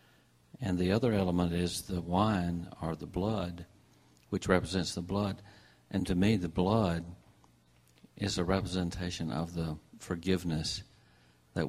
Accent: American